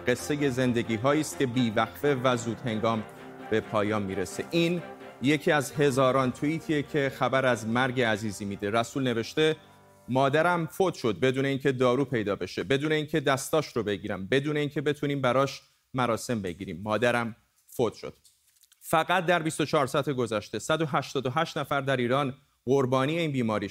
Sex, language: male, Persian